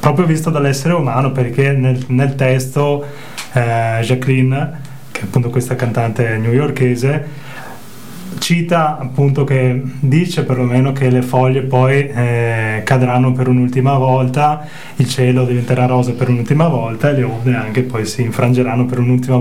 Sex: male